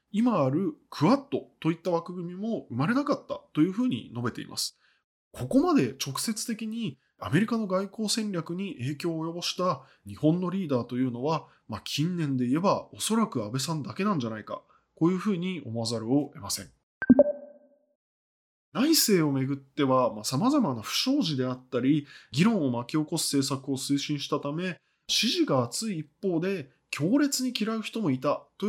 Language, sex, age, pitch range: Japanese, male, 20-39, 135-210 Hz